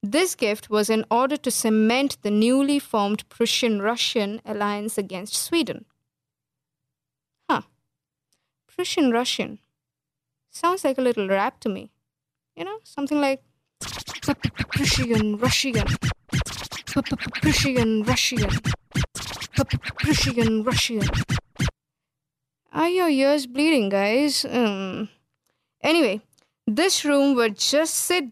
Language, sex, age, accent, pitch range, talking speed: English, female, 20-39, Indian, 210-275 Hz, 90 wpm